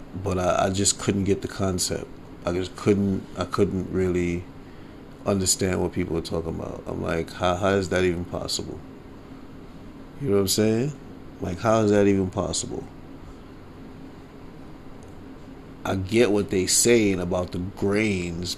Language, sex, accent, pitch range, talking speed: English, male, American, 95-120 Hz, 150 wpm